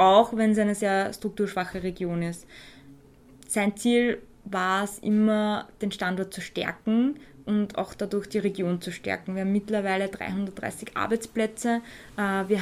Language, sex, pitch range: German, female, 190-215 Hz